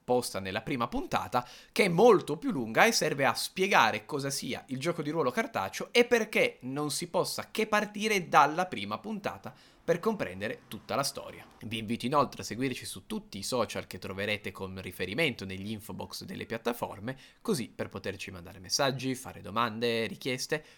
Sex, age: male, 20-39